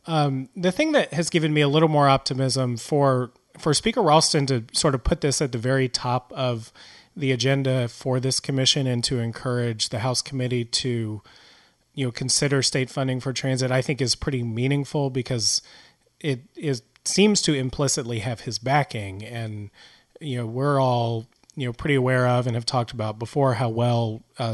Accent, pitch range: American, 120-150 Hz